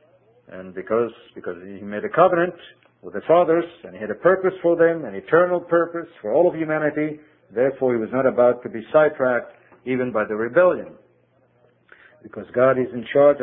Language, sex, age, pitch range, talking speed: English, male, 50-69, 110-170 Hz, 185 wpm